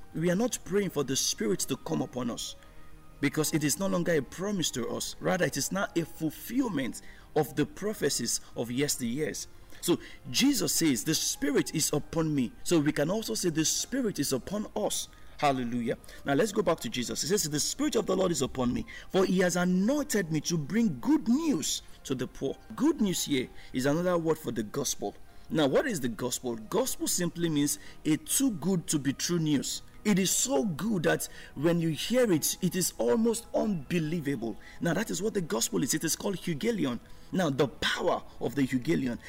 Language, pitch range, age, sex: English, 145-220 Hz, 50-69, male